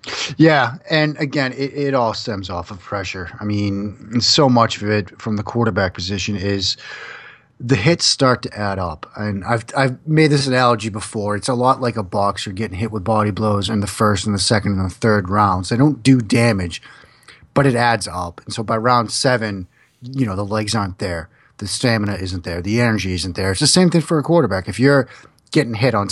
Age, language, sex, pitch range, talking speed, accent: 30-49, English, male, 100-130 Hz, 215 wpm, American